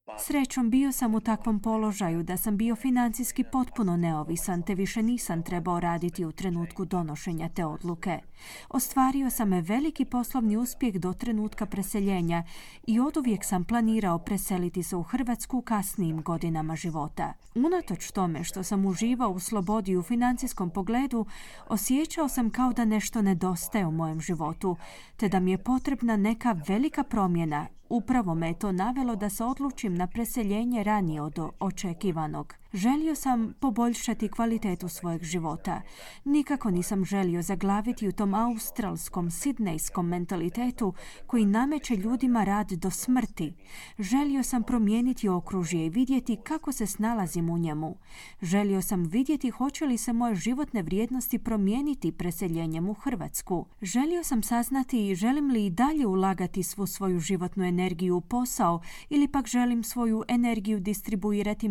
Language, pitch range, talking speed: Croatian, 180-245 Hz, 145 wpm